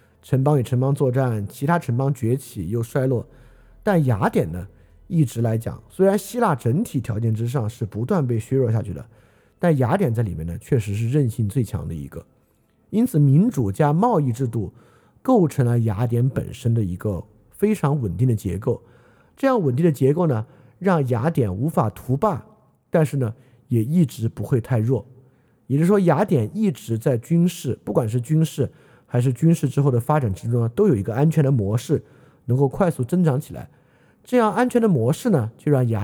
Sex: male